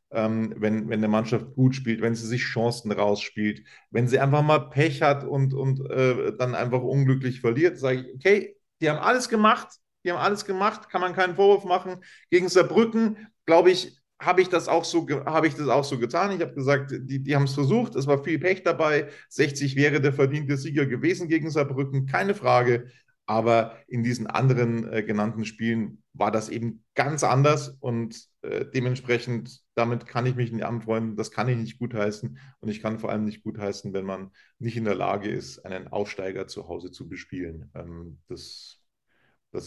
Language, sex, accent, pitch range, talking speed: German, male, German, 115-145 Hz, 195 wpm